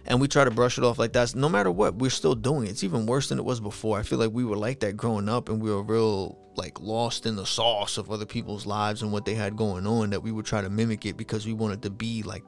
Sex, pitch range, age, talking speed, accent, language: male, 105-125 Hz, 20-39, 310 wpm, American, English